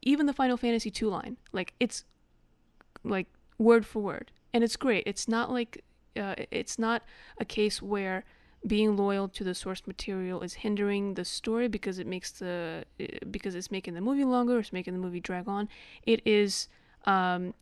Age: 20-39